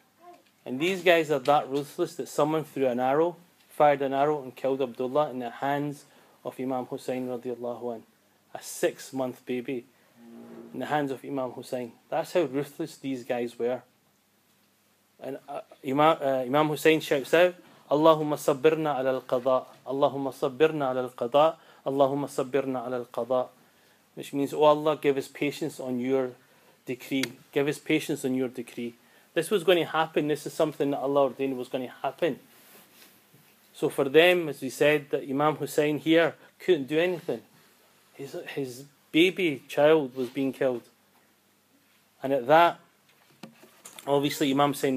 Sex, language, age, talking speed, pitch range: male, English, 30-49, 155 wpm, 130-155 Hz